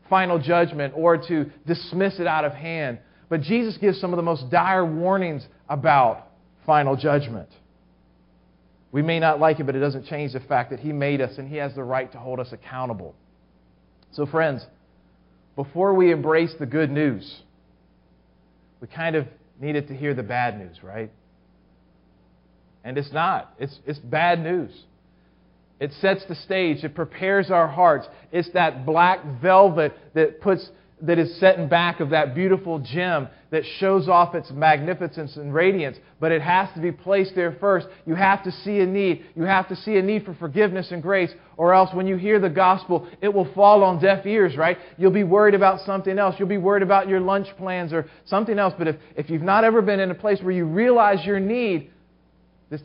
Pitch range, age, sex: 135-190 Hz, 40-59, male